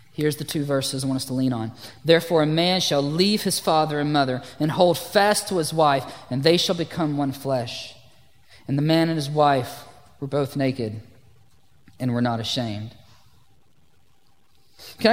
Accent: American